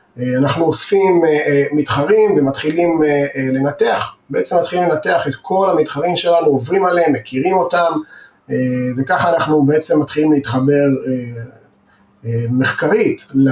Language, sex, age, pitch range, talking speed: Hebrew, male, 30-49, 135-175 Hz, 100 wpm